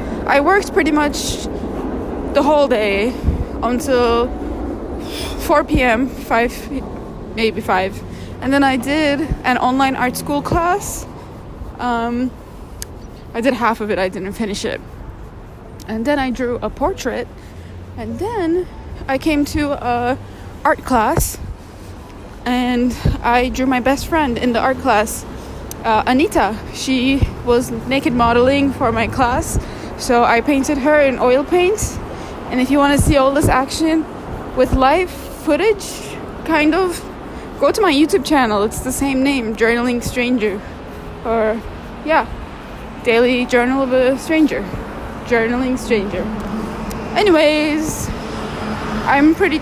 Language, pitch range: English, 230-290 Hz